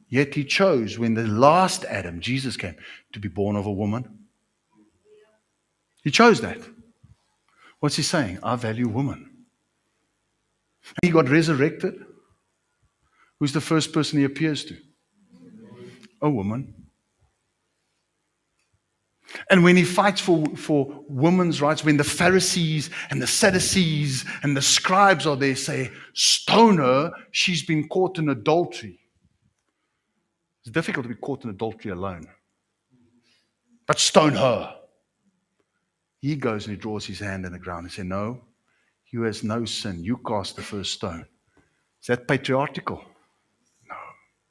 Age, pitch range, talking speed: 60-79, 115-165 Hz, 135 wpm